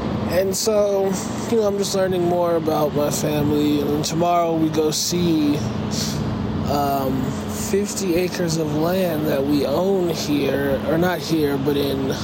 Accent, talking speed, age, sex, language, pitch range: American, 145 wpm, 20-39, male, English, 130-165 Hz